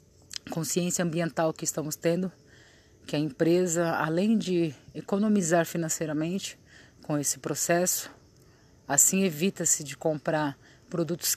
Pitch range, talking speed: 145-180 Hz, 105 wpm